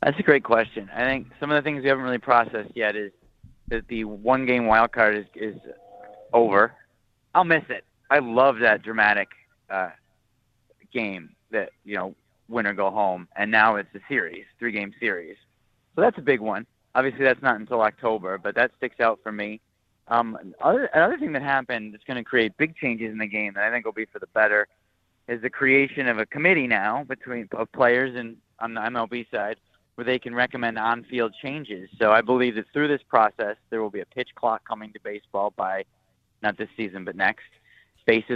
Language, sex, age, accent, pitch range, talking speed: English, male, 30-49, American, 105-125 Hz, 200 wpm